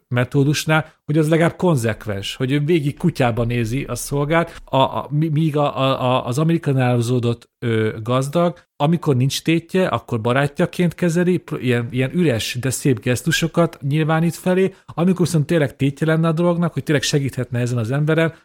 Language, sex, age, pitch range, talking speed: Hungarian, male, 40-59, 120-150 Hz, 160 wpm